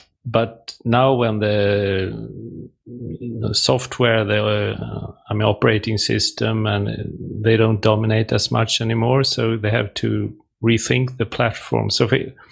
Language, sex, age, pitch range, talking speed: English, male, 40-59, 100-120 Hz, 135 wpm